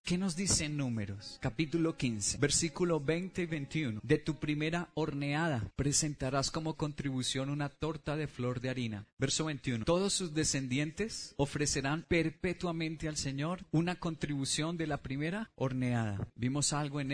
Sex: male